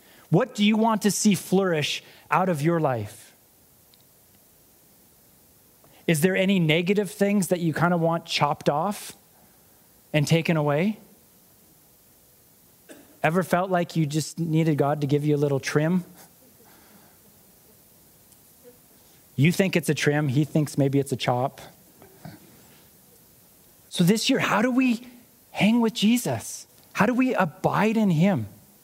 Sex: male